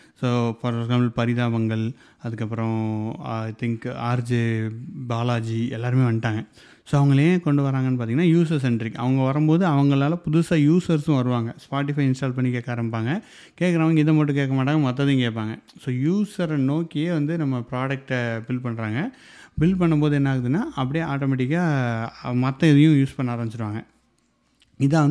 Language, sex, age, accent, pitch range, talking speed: Tamil, male, 30-49, native, 120-150 Hz, 135 wpm